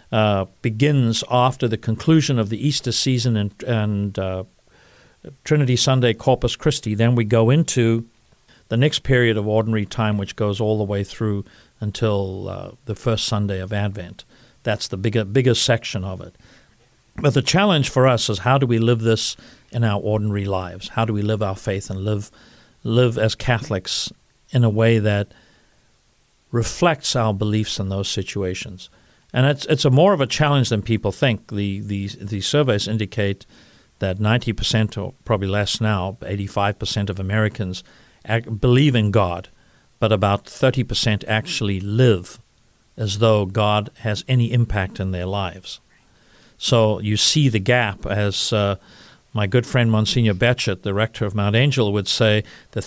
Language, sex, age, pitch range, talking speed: English, male, 50-69, 100-125 Hz, 170 wpm